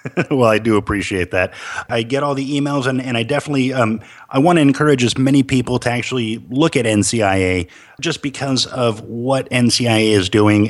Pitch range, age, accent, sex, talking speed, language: 115-130 Hz, 30-49, American, male, 190 wpm, English